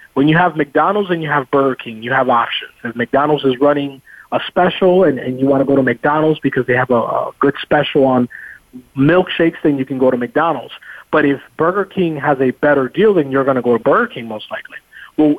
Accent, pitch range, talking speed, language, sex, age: American, 125-155 Hz, 235 wpm, English, male, 30-49